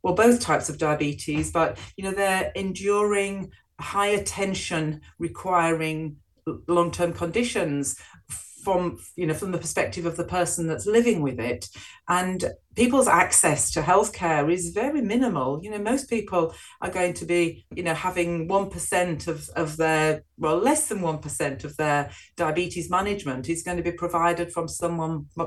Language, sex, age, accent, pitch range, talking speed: English, female, 40-59, British, 150-185 Hz, 160 wpm